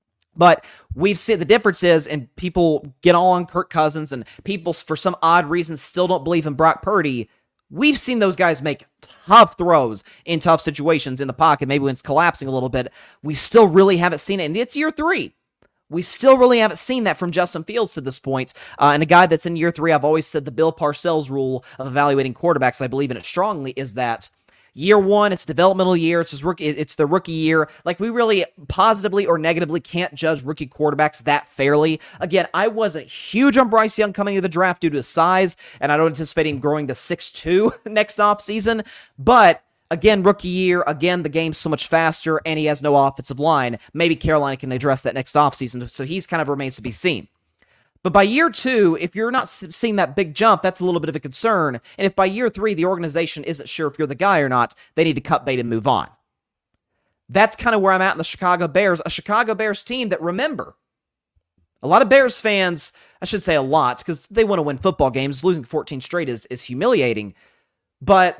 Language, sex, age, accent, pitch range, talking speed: English, male, 30-49, American, 145-195 Hz, 220 wpm